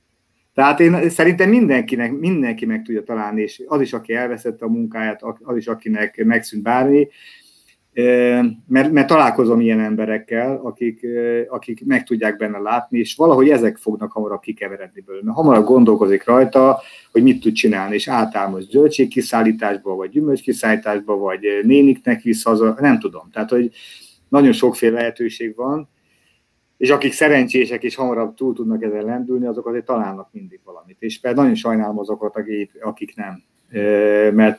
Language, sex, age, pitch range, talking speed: Hungarian, male, 50-69, 110-130 Hz, 145 wpm